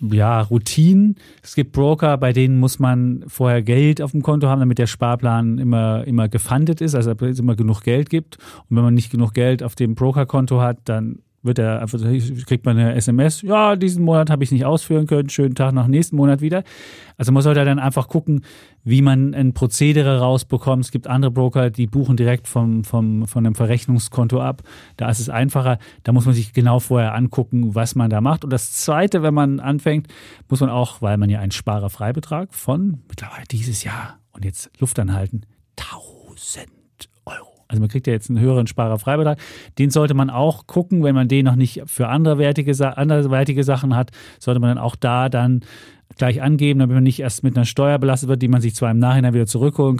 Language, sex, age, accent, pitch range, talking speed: German, male, 40-59, German, 120-145 Hz, 210 wpm